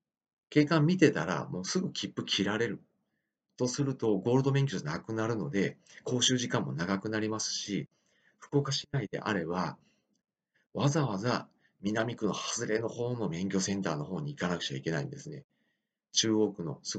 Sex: male